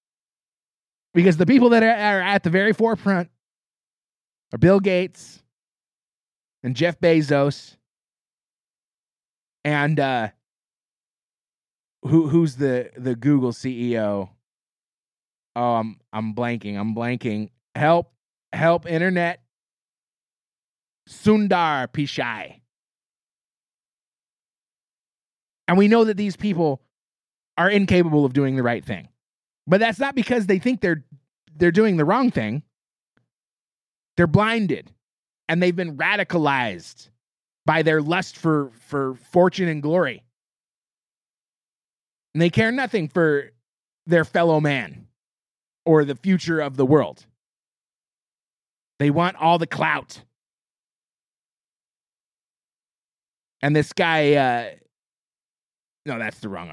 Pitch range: 130-185 Hz